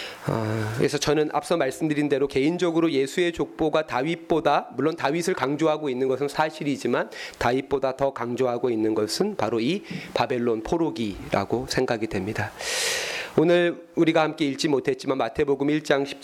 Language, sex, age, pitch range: Korean, male, 30-49, 135-175 Hz